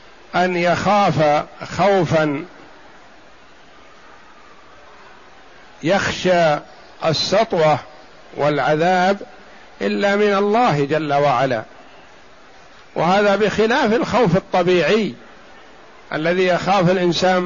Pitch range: 170-200 Hz